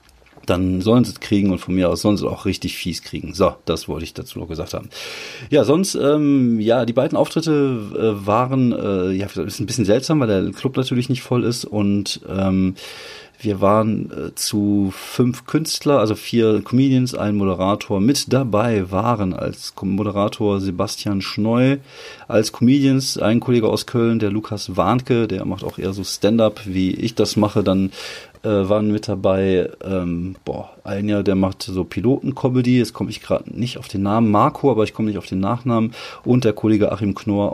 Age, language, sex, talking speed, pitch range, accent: 30-49, German, male, 190 wpm, 95-125 Hz, German